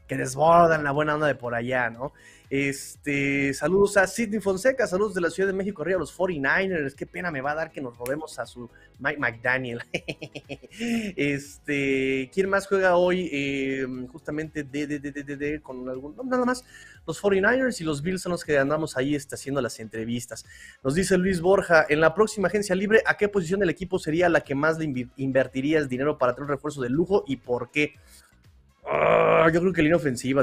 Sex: male